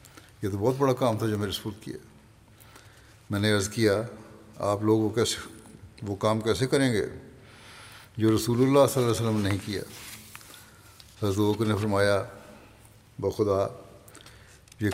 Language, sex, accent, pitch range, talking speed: English, male, Indian, 100-115 Hz, 155 wpm